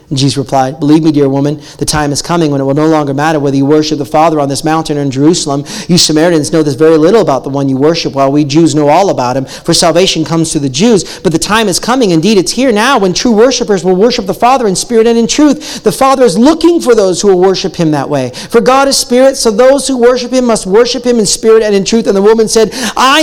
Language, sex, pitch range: English, male, 140-200 Hz